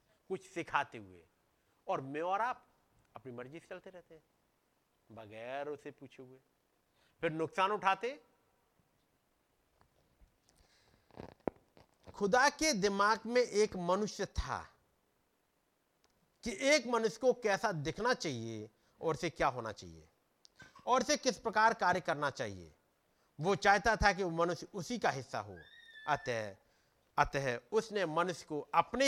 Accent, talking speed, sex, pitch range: native, 120 wpm, male, 135-220 Hz